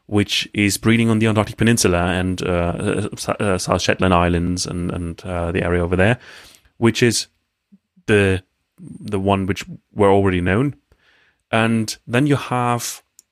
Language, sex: English, male